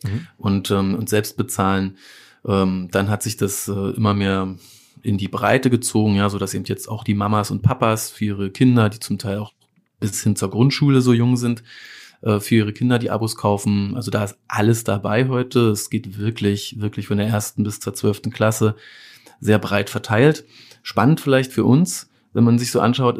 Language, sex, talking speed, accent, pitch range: German, male, 200 wpm, German, 105-120 Hz